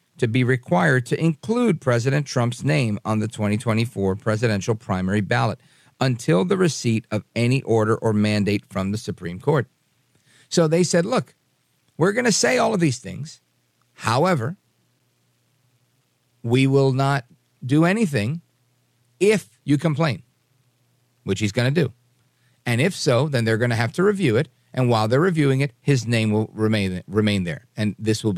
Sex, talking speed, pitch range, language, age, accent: male, 165 wpm, 110-150 Hz, English, 50-69, American